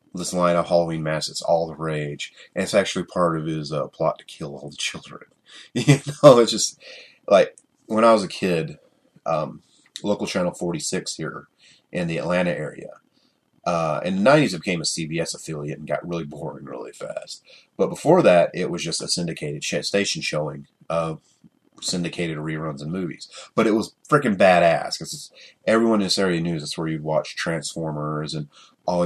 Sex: male